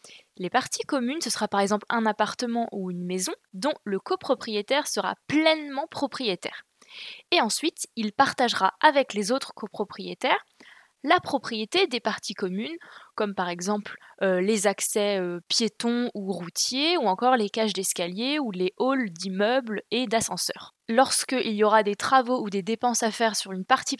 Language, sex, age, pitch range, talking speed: French, female, 20-39, 205-270 Hz, 165 wpm